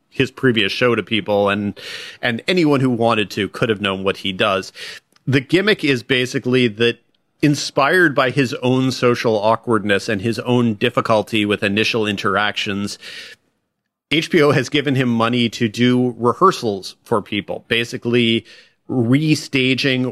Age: 40-59